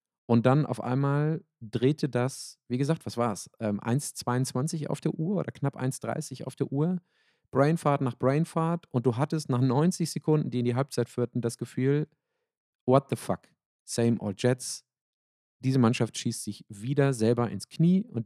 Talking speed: 170 wpm